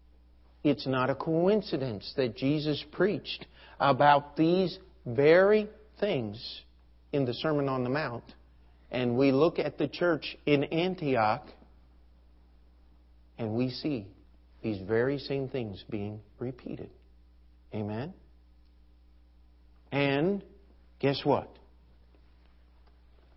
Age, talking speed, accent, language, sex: 50-69, 100 wpm, American, English, male